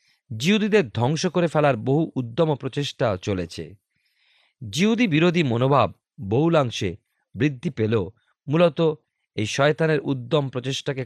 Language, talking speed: Bengali, 105 wpm